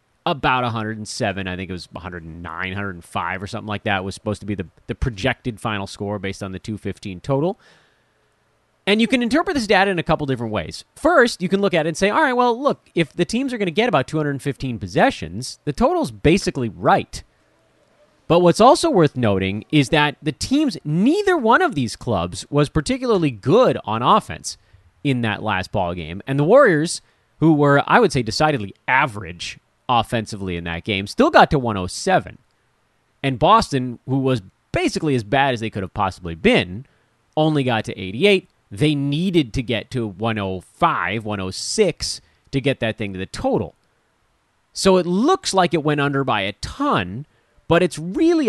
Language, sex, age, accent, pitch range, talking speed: English, male, 30-49, American, 105-165 Hz, 185 wpm